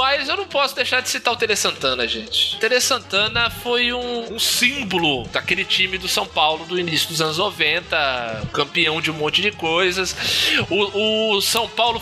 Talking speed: 190 wpm